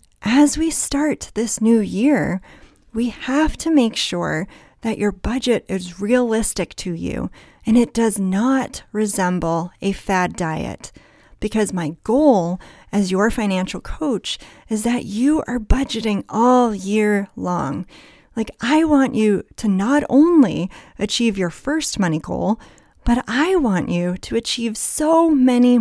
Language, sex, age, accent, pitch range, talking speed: English, female, 30-49, American, 195-255 Hz, 140 wpm